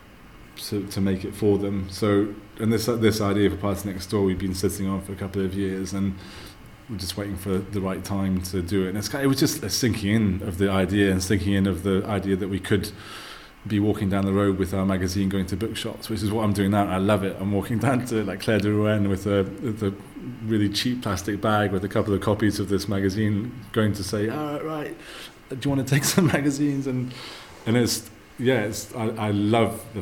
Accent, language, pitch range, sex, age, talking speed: British, English, 100-110 Hz, male, 30-49, 250 wpm